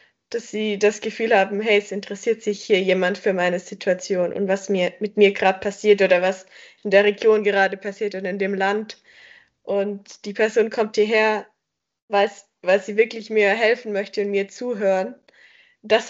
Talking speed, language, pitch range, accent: 175 wpm, German, 190-215 Hz, German